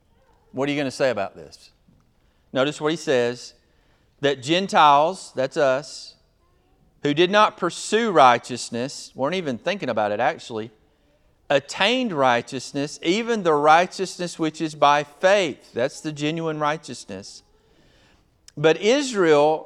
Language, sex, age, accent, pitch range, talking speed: English, male, 40-59, American, 140-200 Hz, 130 wpm